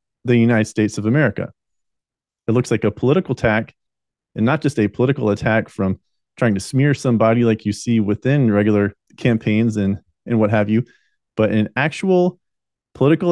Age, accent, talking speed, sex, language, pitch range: 30-49, American, 165 wpm, male, English, 110-135 Hz